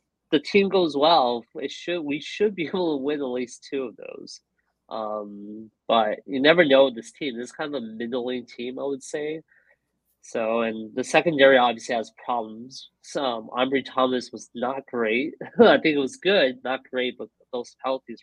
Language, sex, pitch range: English, male, 115-145 Hz